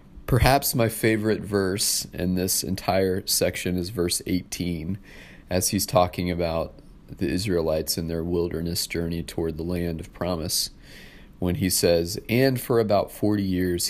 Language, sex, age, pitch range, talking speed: English, male, 30-49, 90-105 Hz, 145 wpm